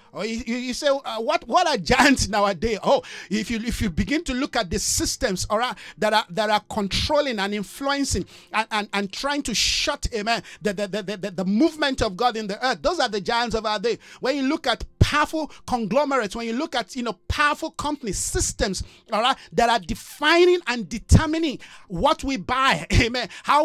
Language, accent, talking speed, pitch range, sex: English, Nigerian, 210 wpm, 225-295 Hz, male